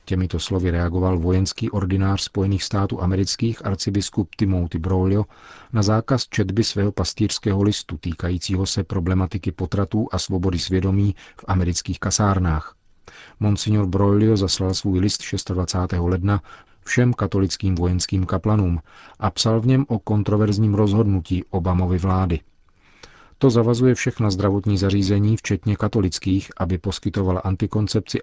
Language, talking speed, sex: Czech, 120 wpm, male